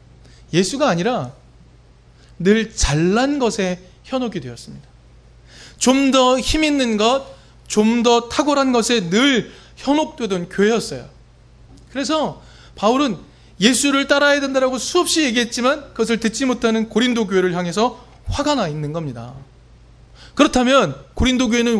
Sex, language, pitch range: male, Korean, 165-245 Hz